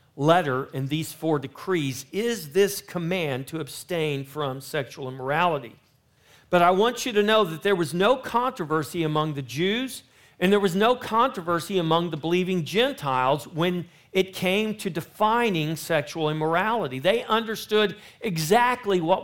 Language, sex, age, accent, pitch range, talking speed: English, male, 50-69, American, 145-205 Hz, 145 wpm